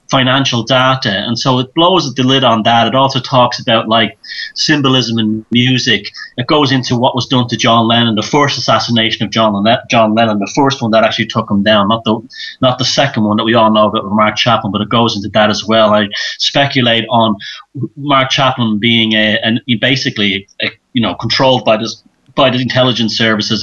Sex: male